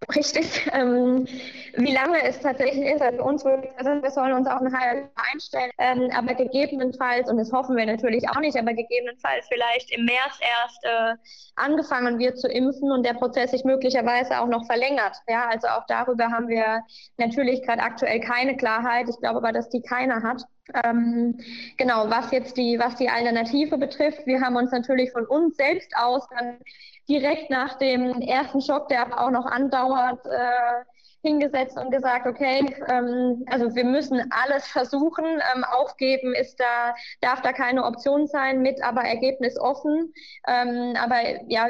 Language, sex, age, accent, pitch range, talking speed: German, female, 20-39, German, 235-265 Hz, 160 wpm